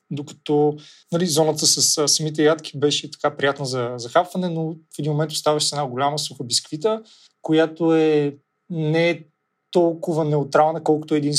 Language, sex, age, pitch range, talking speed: Bulgarian, male, 30-49, 135-160 Hz, 155 wpm